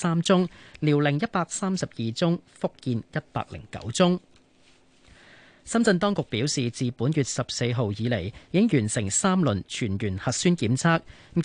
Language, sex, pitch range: Chinese, male, 120-165 Hz